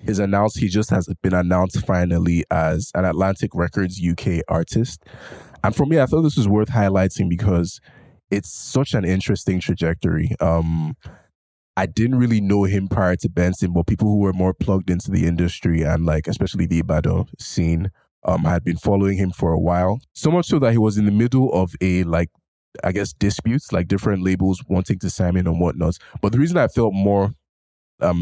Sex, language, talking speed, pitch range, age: male, English, 195 wpm, 85-100 Hz, 20-39